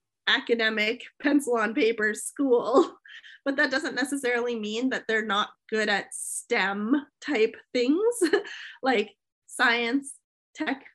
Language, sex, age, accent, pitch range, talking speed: English, female, 30-49, American, 215-265 Hz, 115 wpm